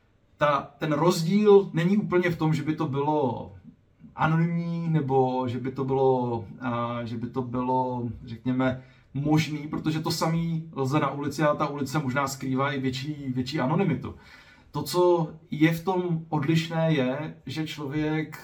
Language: Slovak